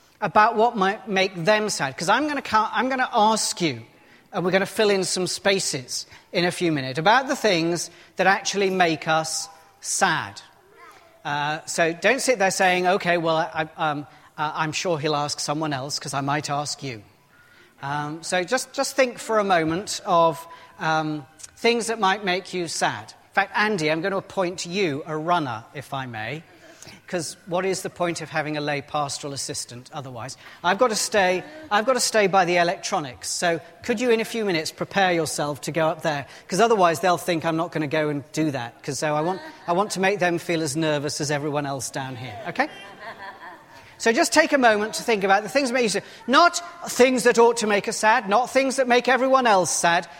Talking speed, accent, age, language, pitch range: 215 wpm, British, 40-59, English, 155-205 Hz